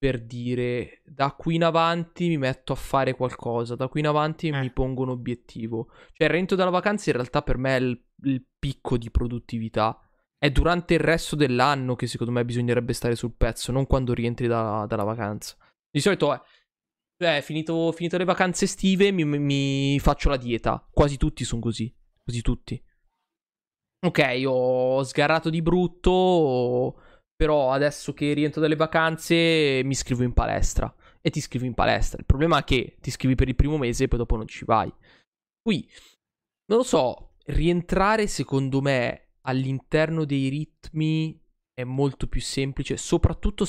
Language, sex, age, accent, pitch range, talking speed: Italian, male, 20-39, native, 120-155 Hz, 170 wpm